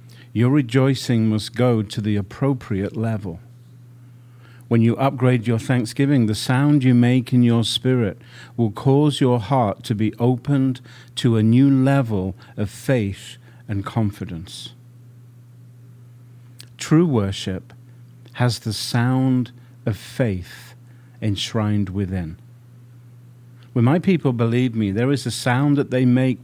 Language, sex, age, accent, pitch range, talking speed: English, male, 50-69, British, 115-125 Hz, 125 wpm